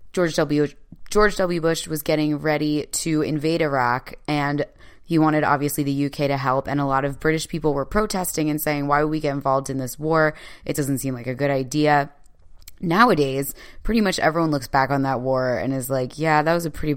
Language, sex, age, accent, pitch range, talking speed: English, female, 20-39, American, 140-175 Hz, 215 wpm